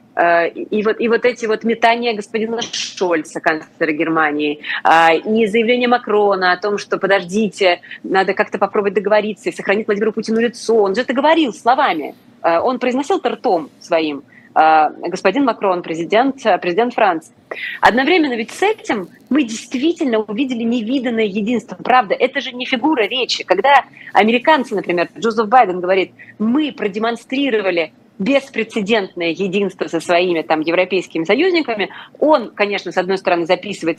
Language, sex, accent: Russian, female, native